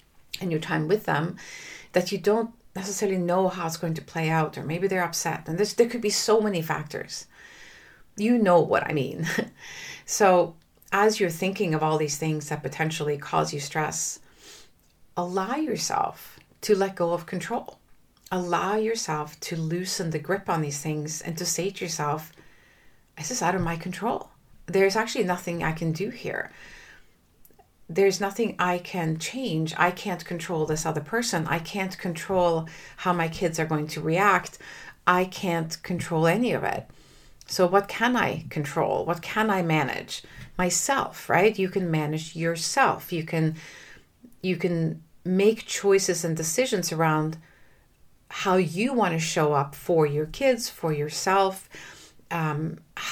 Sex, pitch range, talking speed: female, 160-195 Hz, 160 wpm